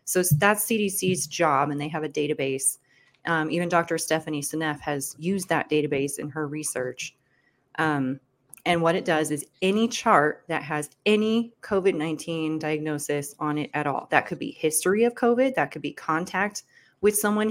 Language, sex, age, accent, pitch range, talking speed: English, female, 30-49, American, 145-175 Hz, 170 wpm